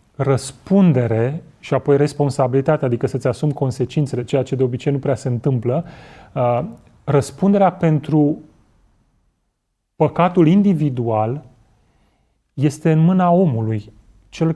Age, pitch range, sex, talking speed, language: 30-49, 135-170 Hz, male, 105 wpm, Romanian